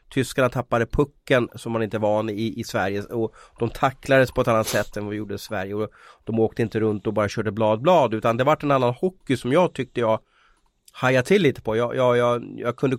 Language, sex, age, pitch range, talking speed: Swedish, male, 30-49, 110-135 Hz, 240 wpm